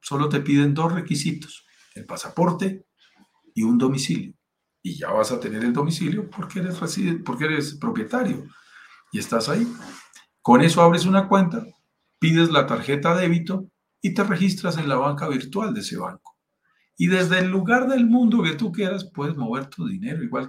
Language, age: Spanish, 50-69